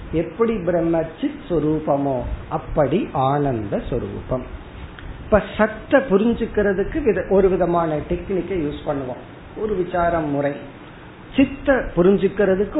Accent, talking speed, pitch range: native, 55 wpm, 145-200 Hz